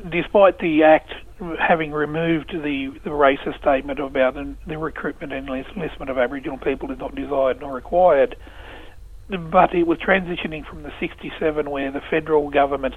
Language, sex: English, male